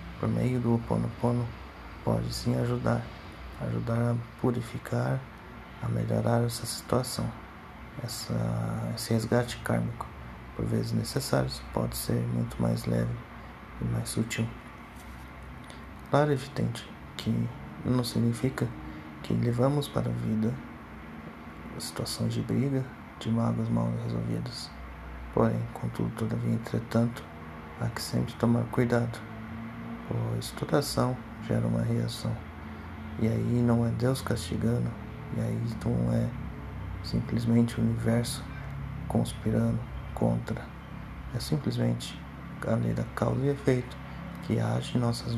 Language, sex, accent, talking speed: Portuguese, male, Brazilian, 115 wpm